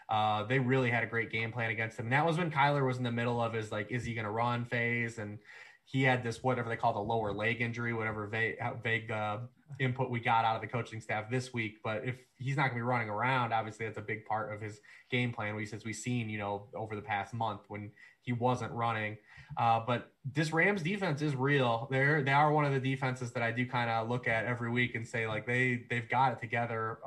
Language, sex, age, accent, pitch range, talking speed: English, male, 20-39, American, 110-125 Hz, 255 wpm